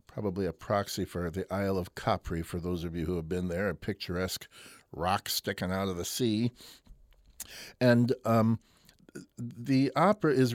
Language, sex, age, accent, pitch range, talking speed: English, male, 60-79, American, 95-130 Hz, 165 wpm